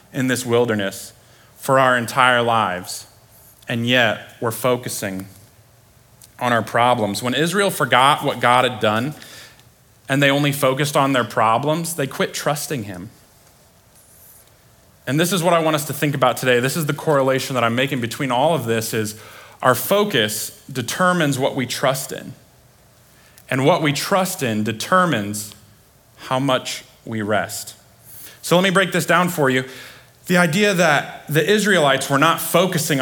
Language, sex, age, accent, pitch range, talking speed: English, male, 30-49, American, 120-155 Hz, 160 wpm